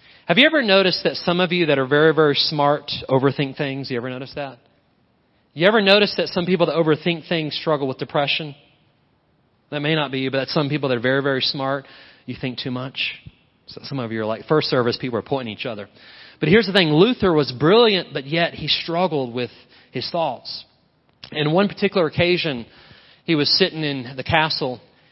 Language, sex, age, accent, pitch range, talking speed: English, male, 30-49, American, 125-165 Hz, 205 wpm